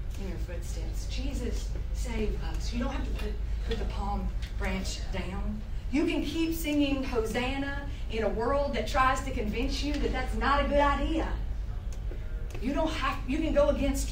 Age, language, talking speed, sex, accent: 40-59, English, 180 wpm, female, American